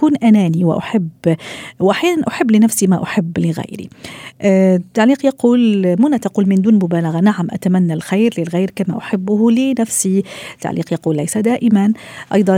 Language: Arabic